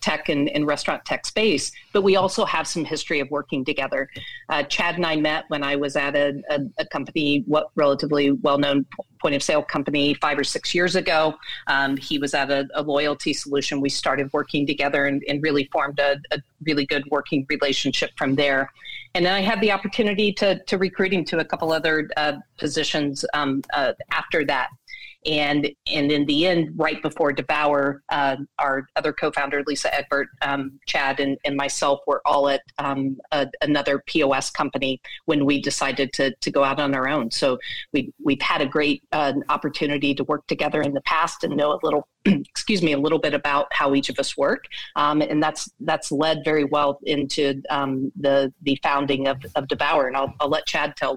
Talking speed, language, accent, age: 200 wpm, English, American, 40-59